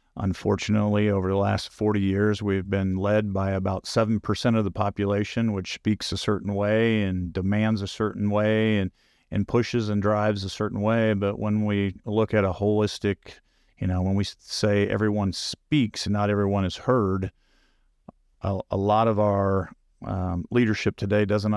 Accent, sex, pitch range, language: American, male, 95-110 Hz, English